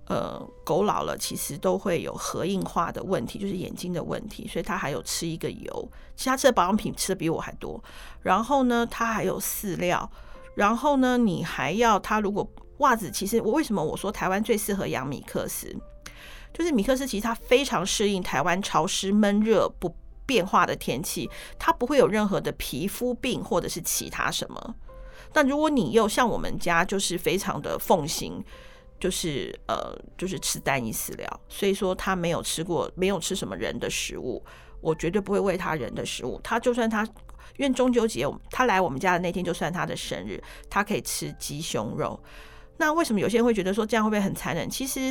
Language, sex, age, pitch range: Chinese, female, 40-59, 185-235 Hz